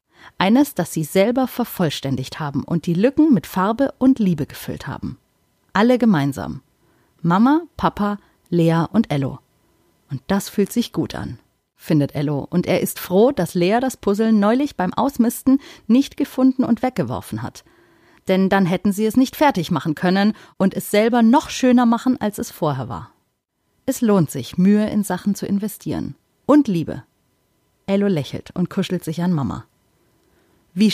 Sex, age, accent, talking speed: female, 30-49, German, 160 wpm